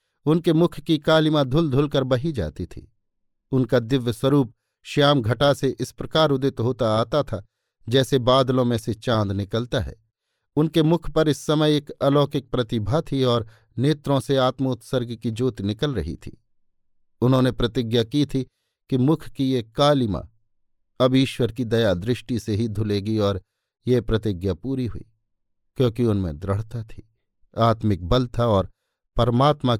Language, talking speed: Hindi, 155 wpm